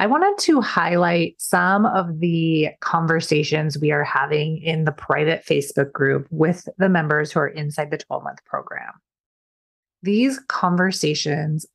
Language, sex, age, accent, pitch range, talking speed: English, female, 30-49, American, 155-195 Hz, 145 wpm